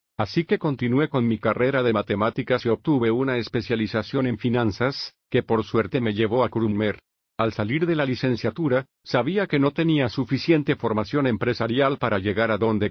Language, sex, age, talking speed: English, male, 50-69, 170 wpm